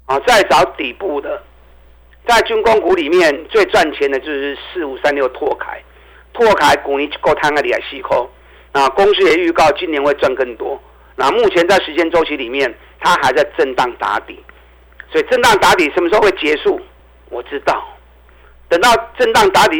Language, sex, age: Chinese, male, 50-69